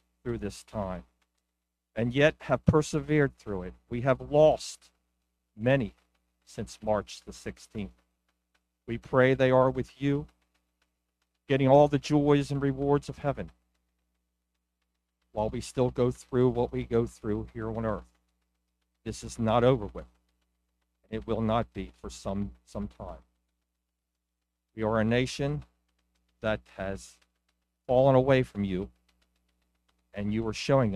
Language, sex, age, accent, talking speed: English, male, 50-69, American, 135 wpm